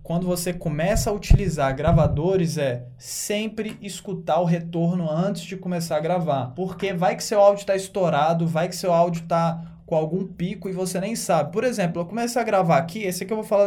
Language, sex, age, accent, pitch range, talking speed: Portuguese, male, 20-39, Brazilian, 160-195 Hz, 205 wpm